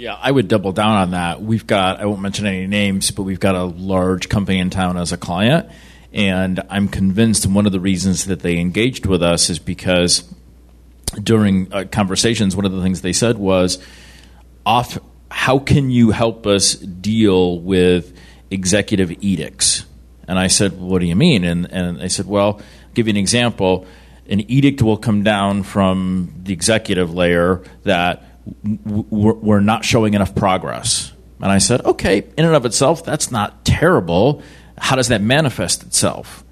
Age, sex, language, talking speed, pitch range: 40-59, male, English, 175 wpm, 90-105 Hz